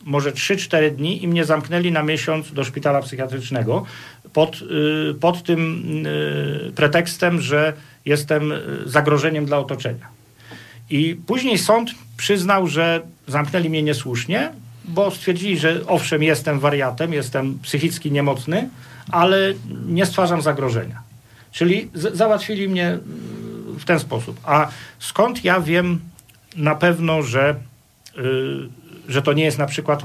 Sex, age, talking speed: male, 50-69, 120 wpm